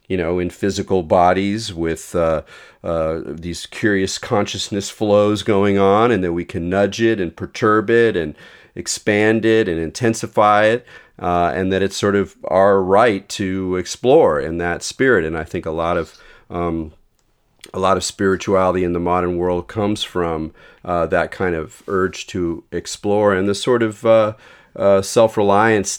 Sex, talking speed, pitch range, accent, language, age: male, 170 wpm, 85-105 Hz, American, English, 40-59